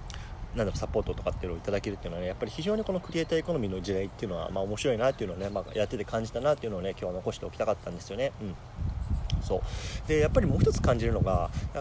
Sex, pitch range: male, 100-130 Hz